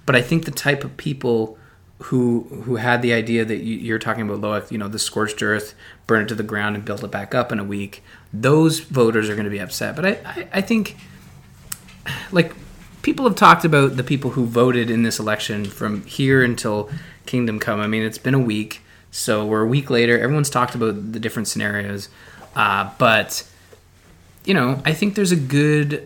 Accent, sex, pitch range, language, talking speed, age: American, male, 105-135 Hz, English, 205 wpm, 20-39